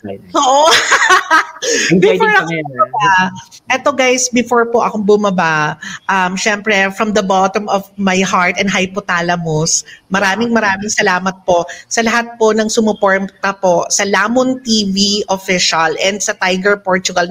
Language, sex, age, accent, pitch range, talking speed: Filipino, female, 40-59, native, 185-225 Hz, 130 wpm